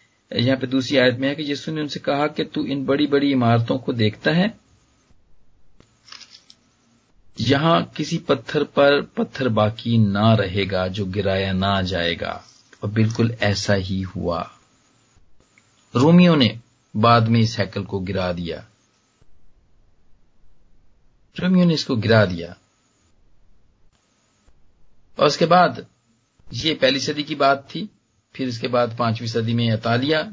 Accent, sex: native, male